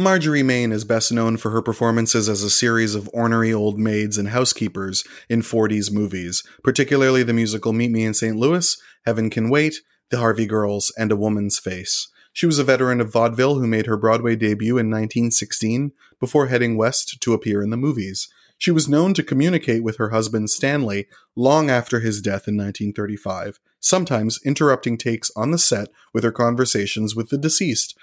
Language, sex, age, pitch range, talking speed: English, male, 30-49, 105-130 Hz, 185 wpm